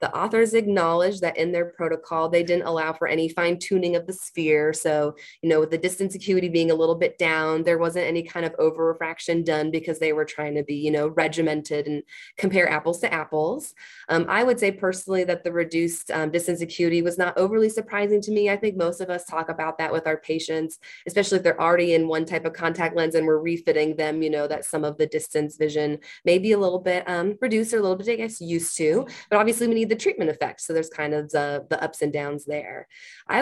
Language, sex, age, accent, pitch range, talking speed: English, female, 20-39, American, 155-190 Hz, 240 wpm